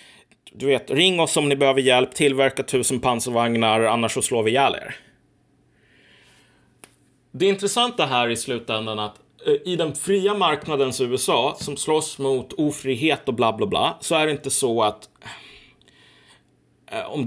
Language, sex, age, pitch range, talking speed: Swedish, male, 30-49, 115-145 Hz, 155 wpm